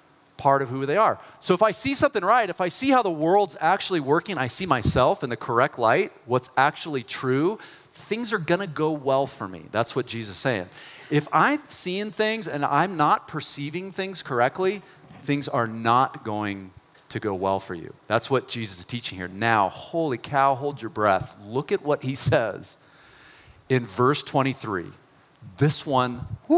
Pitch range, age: 110-175 Hz, 40-59